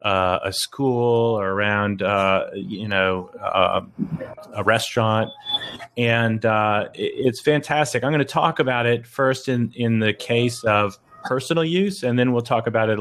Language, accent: English, American